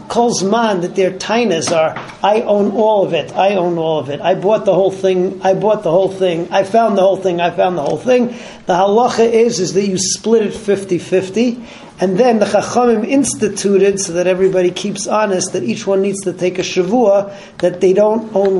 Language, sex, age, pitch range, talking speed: English, male, 40-59, 180-210 Hz, 210 wpm